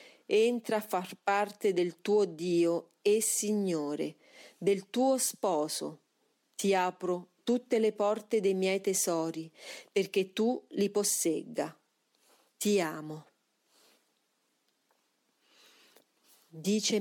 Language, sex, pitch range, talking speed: Italian, female, 175-220 Hz, 100 wpm